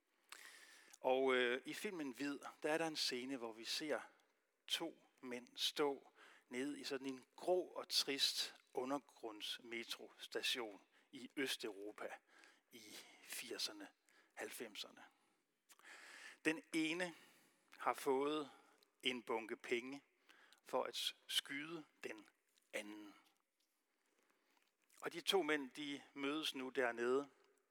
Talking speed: 105 wpm